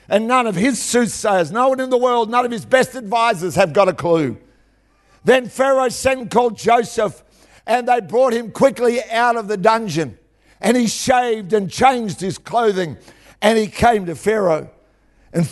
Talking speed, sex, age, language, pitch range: 180 wpm, male, 60-79, English, 185-245 Hz